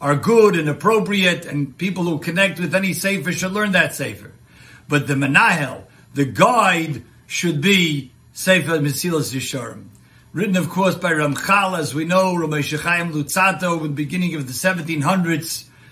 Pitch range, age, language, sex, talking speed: 150-195 Hz, 60-79, English, male, 160 wpm